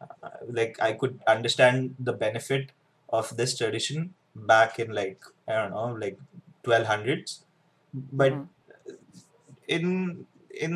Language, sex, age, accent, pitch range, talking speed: Hindi, male, 20-39, native, 125-170 Hz, 115 wpm